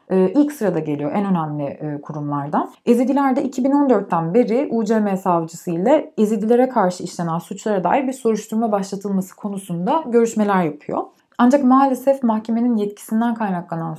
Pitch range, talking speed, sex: 180-245 Hz, 120 wpm, female